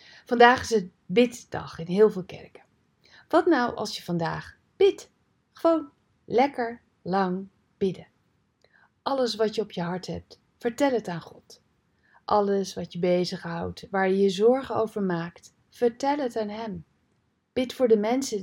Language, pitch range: Dutch, 180-235 Hz